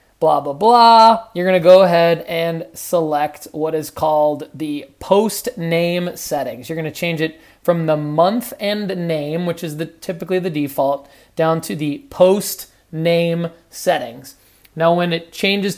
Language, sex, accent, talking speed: English, male, American, 150 wpm